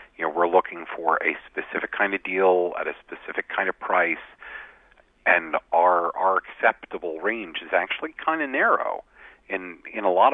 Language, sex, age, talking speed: English, male, 50-69, 175 wpm